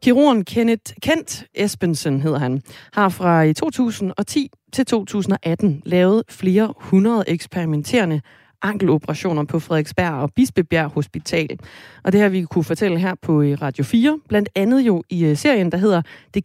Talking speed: 140 wpm